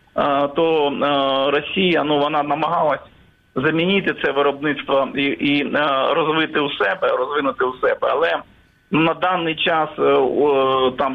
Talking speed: 115 wpm